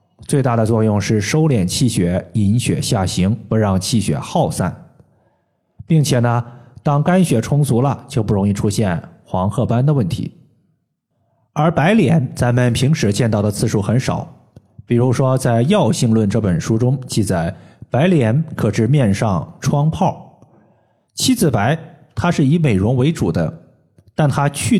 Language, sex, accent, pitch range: Chinese, male, native, 105-145 Hz